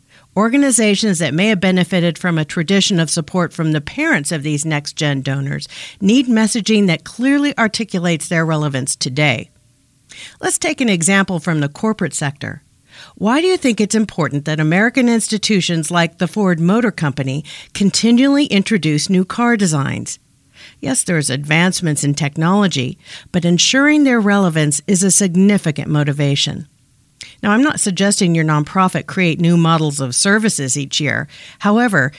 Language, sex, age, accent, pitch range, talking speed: English, female, 50-69, American, 150-210 Hz, 145 wpm